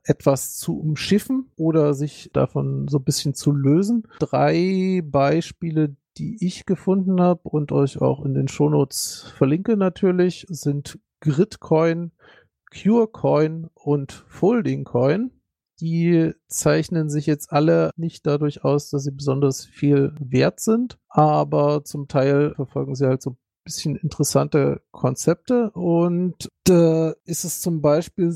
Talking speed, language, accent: 125 wpm, German, German